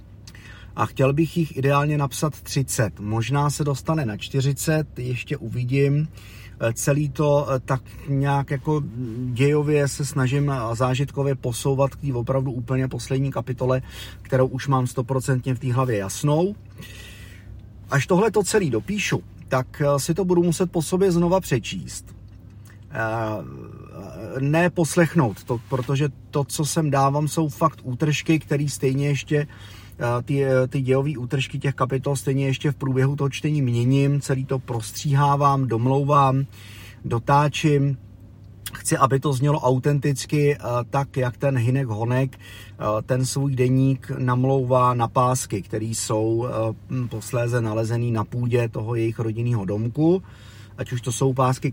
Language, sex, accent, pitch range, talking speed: Czech, male, native, 115-140 Hz, 135 wpm